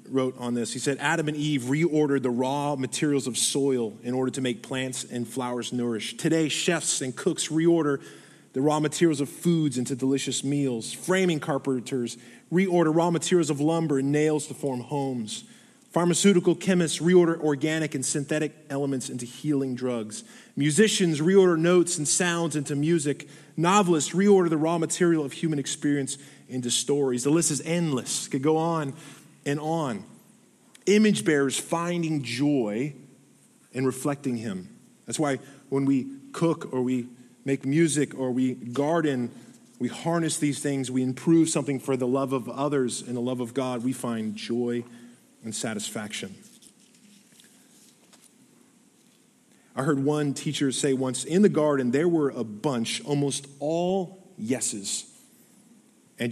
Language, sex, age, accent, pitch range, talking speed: English, male, 20-39, American, 130-170 Hz, 150 wpm